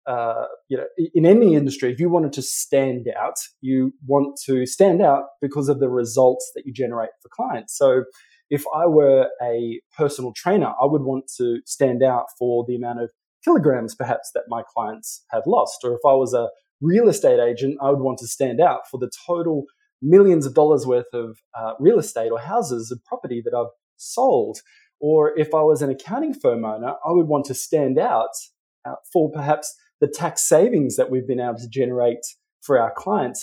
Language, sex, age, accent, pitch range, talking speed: English, male, 20-39, Australian, 125-155 Hz, 195 wpm